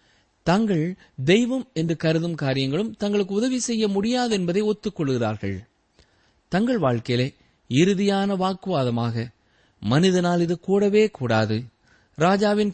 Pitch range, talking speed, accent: 120-190 Hz, 95 wpm, native